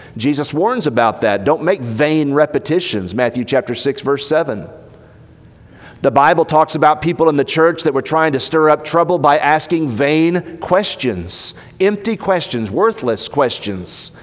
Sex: male